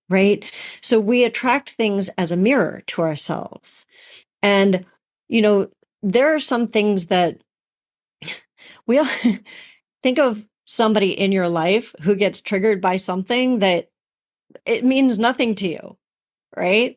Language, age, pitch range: English, 40-59, 180-230 Hz